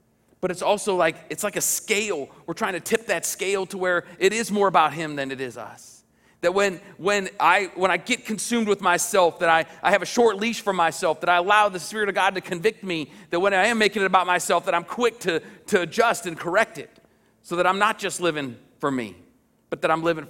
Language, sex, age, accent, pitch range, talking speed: English, male, 40-59, American, 155-185 Hz, 245 wpm